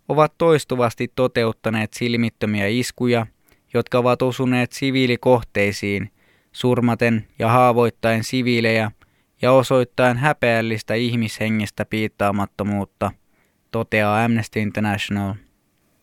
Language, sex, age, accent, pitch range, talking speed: Finnish, male, 20-39, native, 110-125 Hz, 80 wpm